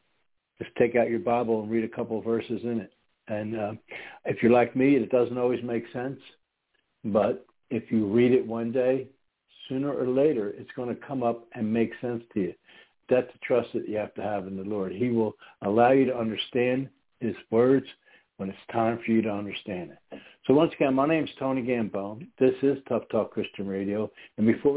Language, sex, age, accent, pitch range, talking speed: English, male, 60-79, American, 105-125 Hz, 205 wpm